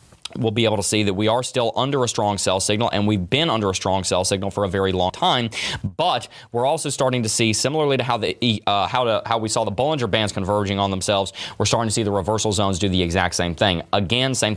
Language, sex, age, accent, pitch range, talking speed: English, male, 30-49, American, 95-120 Hz, 260 wpm